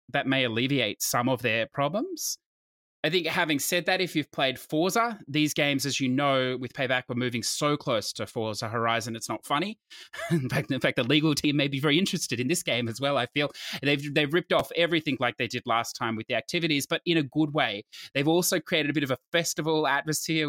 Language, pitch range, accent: English, 120-160 Hz, Australian